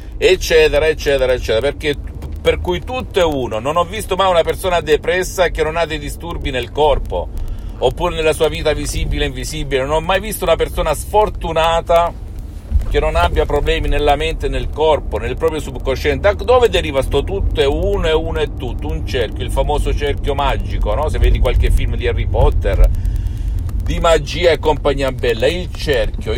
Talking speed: 180 wpm